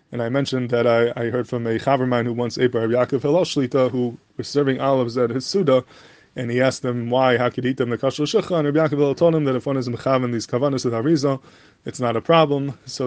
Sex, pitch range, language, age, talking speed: male, 120-145 Hz, English, 20-39, 240 wpm